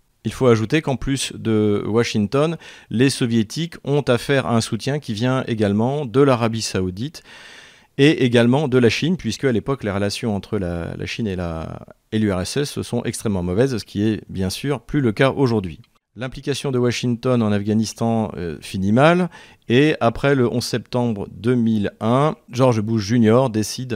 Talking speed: 170 wpm